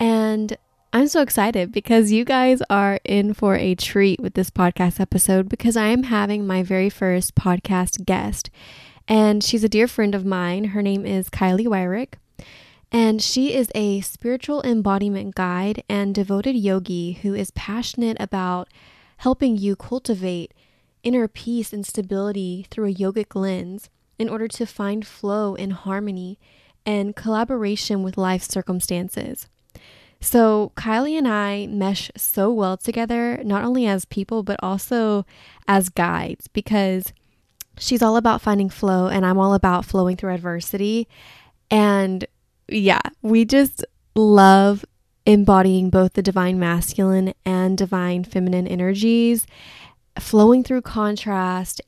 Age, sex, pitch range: 10-29, female, 190-225 Hz